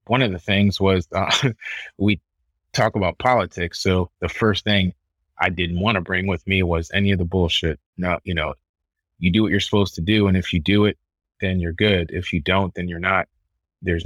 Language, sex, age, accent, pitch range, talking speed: English, male, 30-49, American, 85-100 Hz, 220 wpm